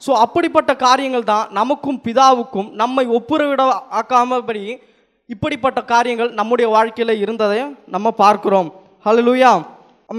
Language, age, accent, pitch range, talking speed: Tamil, 20-39, native, 195-255 Hz, 110 wpm